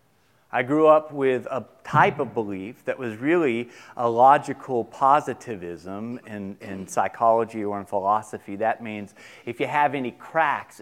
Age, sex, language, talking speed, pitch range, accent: 40-59, male, English, 150 wpm, 120-160 Hz, American